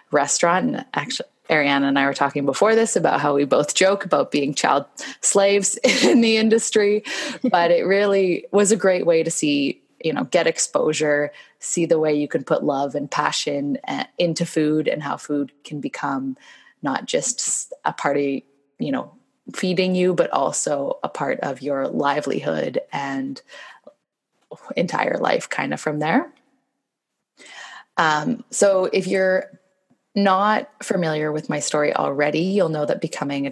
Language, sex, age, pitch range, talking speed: English, female, 20-39, 150-225 Hz, 160 wpm